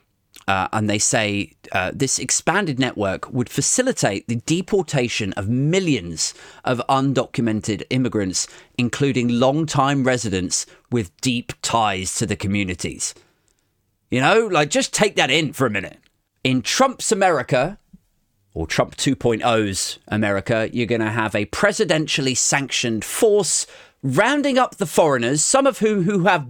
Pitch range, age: 105-150 Hz, 30-49